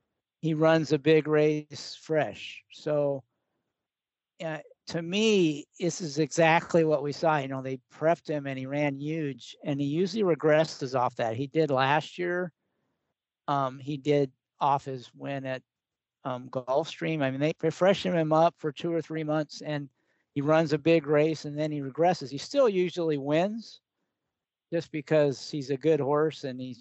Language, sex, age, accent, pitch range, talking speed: English, male, 50-69, American, 135-170 Hz, 170 wpm